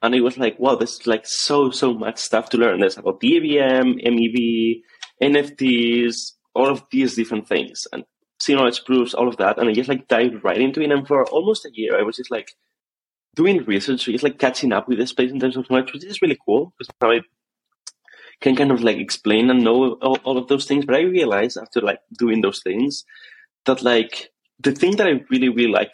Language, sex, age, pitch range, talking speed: English, male, 20-39, 115-140 Hz, 220 wpm